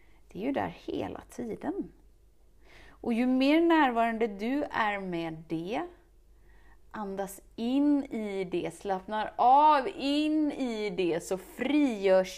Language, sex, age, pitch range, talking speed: Swedish, female, 30-49, 195-255 Hz, 120 wpm